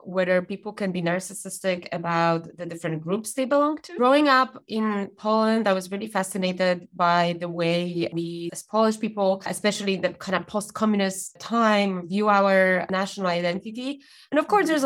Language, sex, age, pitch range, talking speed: English, female, 20-39, 175-215 Hz, 165 wpm